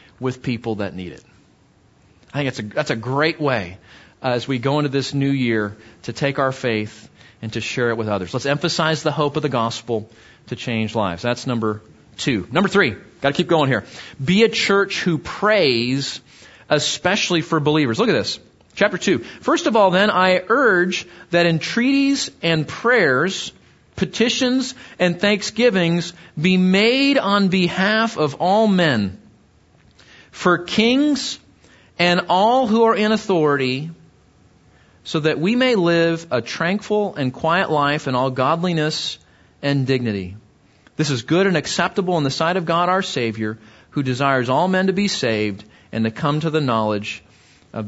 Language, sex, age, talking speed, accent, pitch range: English, male, 40-59, 165 wpm, American, 115-180 Hz